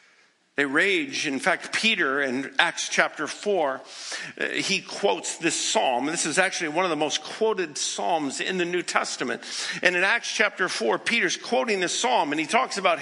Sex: male